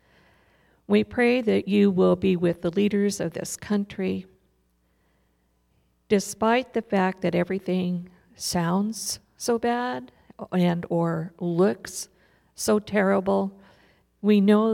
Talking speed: 110 wpm